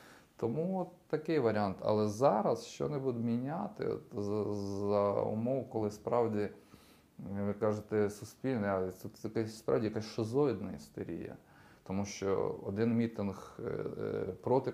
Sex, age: male, 20-39